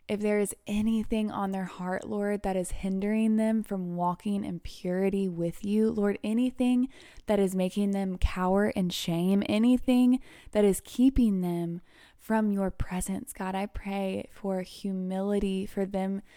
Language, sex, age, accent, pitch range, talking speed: English, female, 20-39, American, 185-210 Hz, 155 wpm